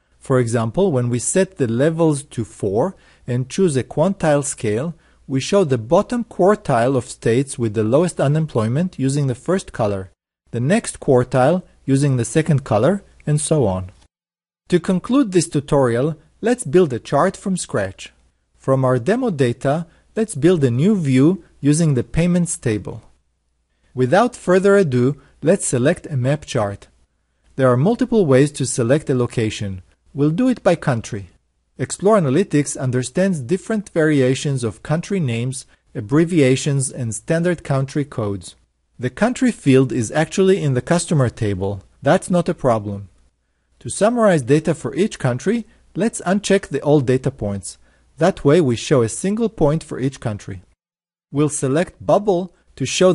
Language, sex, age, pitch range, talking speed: English, male, 40-59, 120-175 Hz, 155 wpm